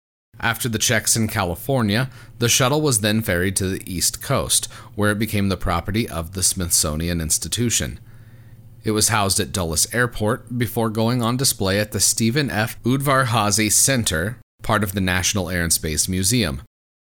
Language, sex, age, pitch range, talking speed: English, male, 30-49, 90-115 Hz, 165 wpm